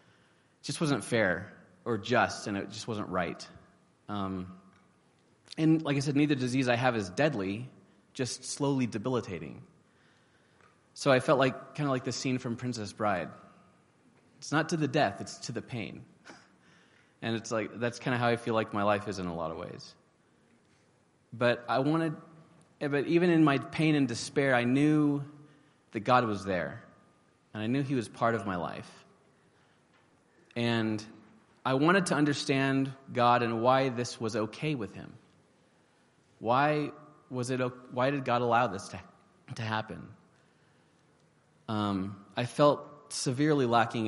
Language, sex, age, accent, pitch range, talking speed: English, male, 30-49, American, 110-140 Hz, 160 wpm